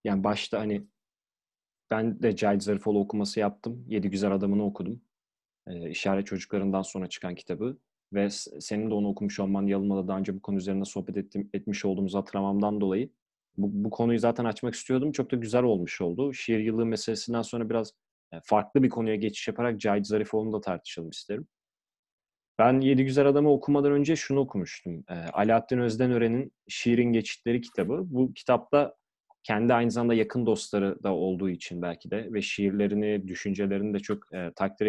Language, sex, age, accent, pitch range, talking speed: Turkish, male, 30-49, native, 100-120 Hz, 165 wpm